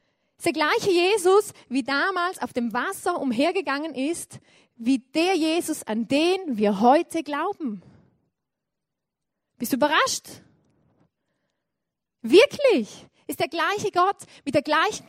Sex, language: female, German